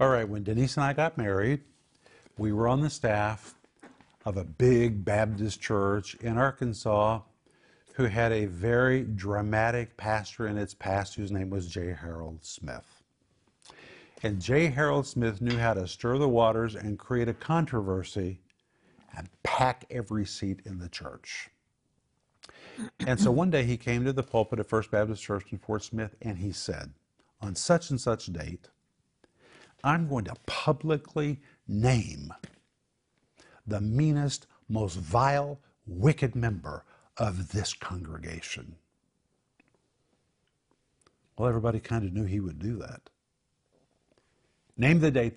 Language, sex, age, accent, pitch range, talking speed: English, male, 50-69, American, 100-125 Hz, 140 wpm